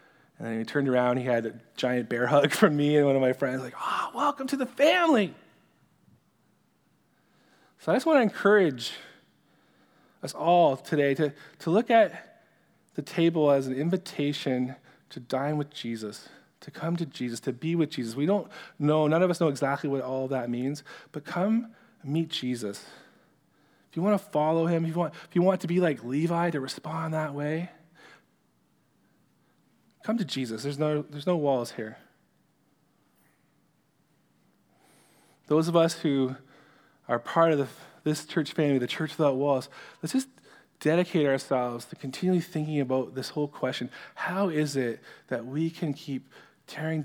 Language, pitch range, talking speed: English, 130-165 Hz, 170 wpm